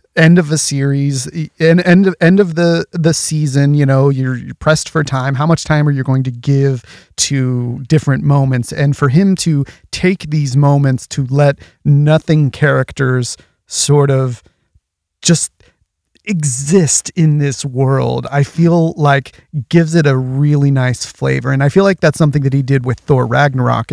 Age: 30-49